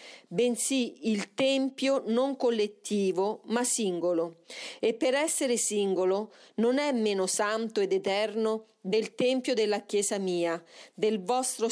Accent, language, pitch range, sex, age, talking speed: native, Italian, 195-255 Hz, female, 40-59, 125 wpm